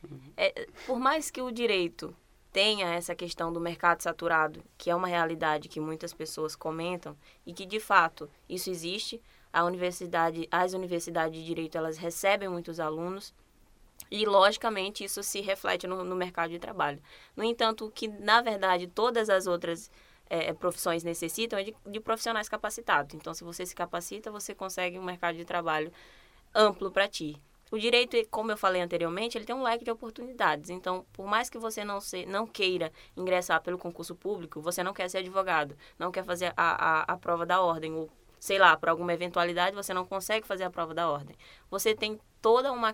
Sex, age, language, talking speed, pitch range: female, 20-39, Portuguese, 180 wpm, 170-215 Hz